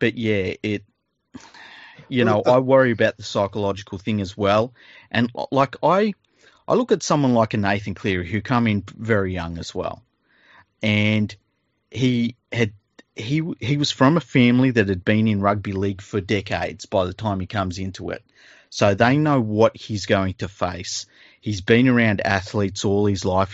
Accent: Australian